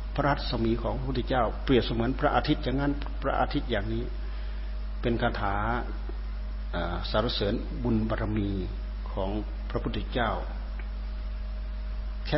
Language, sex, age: Thai, male, 60-79